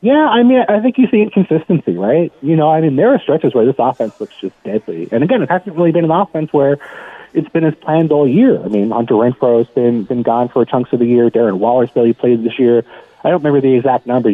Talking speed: 265 wpm